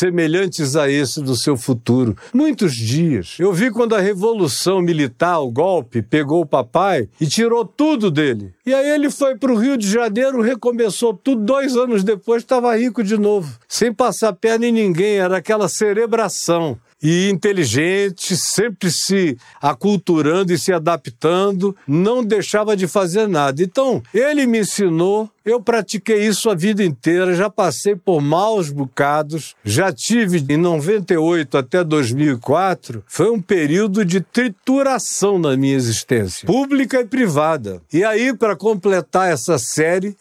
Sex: male